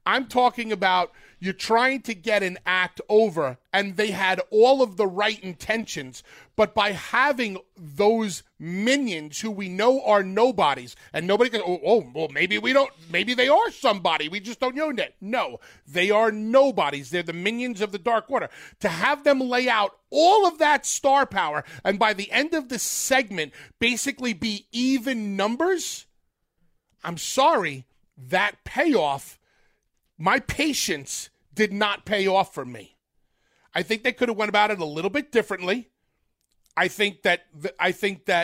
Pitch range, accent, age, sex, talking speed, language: 180-245 Hz, American, 30-49, male, 165 wpm, English